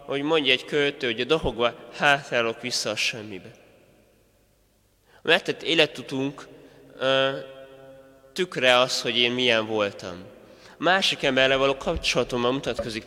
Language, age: Hungarian, 20-39